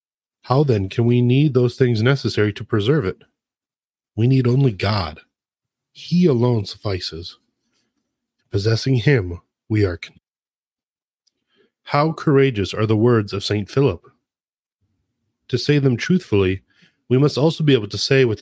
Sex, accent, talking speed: male, American, 135 wpm